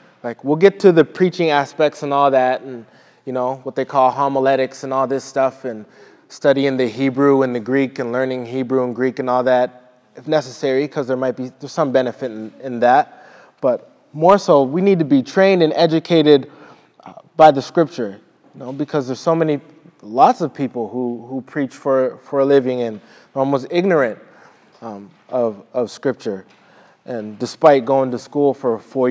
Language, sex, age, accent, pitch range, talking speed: English, male, 20-39, American, 125-150 Hz, 190 wpm